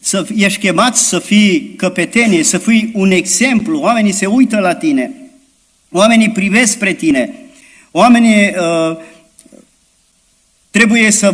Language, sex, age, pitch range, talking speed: Romanian, male, 50-69, 185-245 Hz, 120 wpm